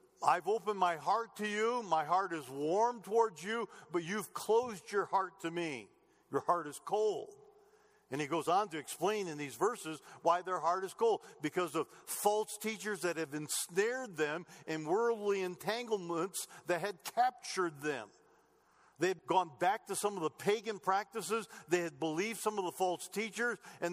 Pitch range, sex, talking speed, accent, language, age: 155-220 Hz, male, 180 wpm, American, English, 50-69